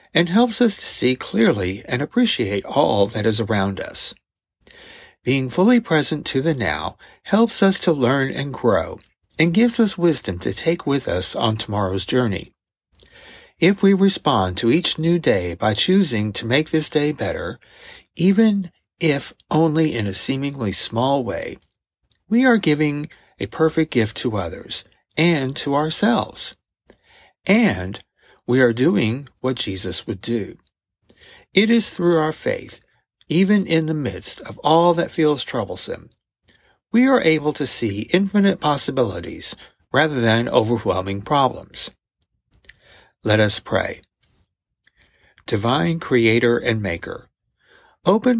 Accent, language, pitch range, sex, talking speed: American, English, 110-170 Hz, male, 135 wpm